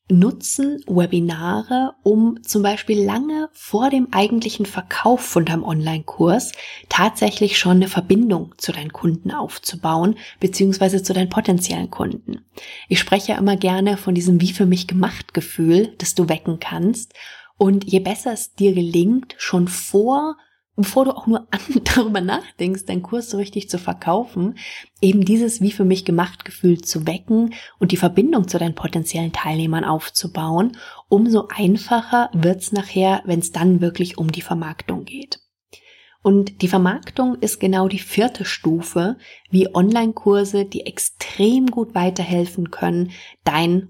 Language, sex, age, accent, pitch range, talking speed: German, female, 30-49, German, 175-215 Hz, 140 wpm